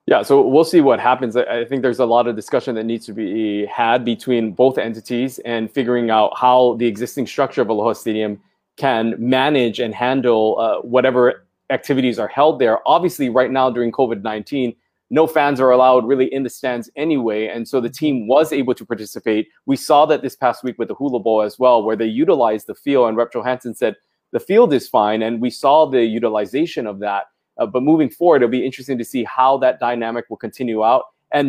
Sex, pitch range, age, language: male, 115-135 Hz, 20-39, English